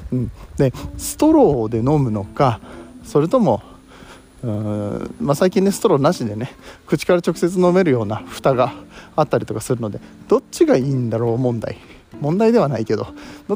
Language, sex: Japanese, male